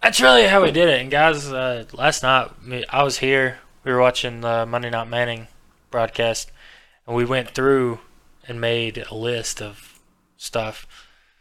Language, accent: English, American